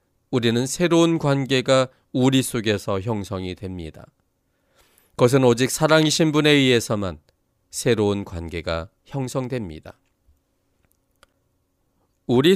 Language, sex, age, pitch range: Korean, male, 40-59, 95-135 Hz